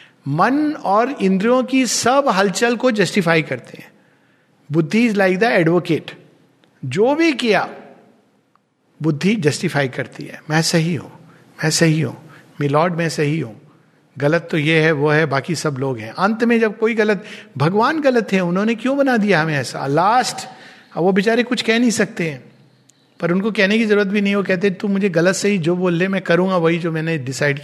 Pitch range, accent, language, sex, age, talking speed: 155-230 Hz, native, Hindi, male, 50-69, 185 wpm